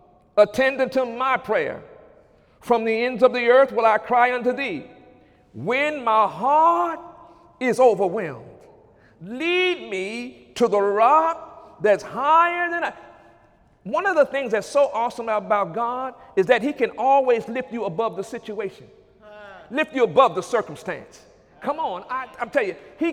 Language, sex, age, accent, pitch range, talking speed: English, male, 50-69, American, 215-270 Hz, 155 wpm